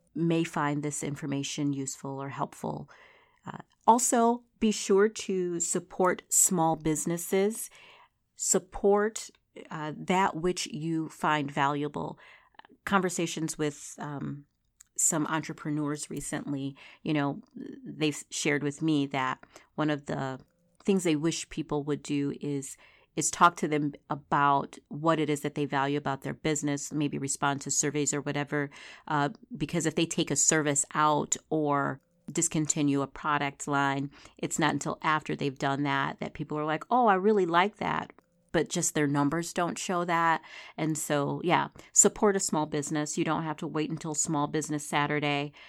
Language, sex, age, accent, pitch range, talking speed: English, female, 40-59, American, 145-170 Hz, 155 wpm